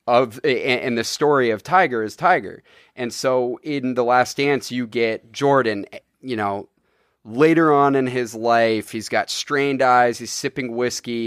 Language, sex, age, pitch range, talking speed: English, male, 30-49, 115-140 Hz, 165 wpm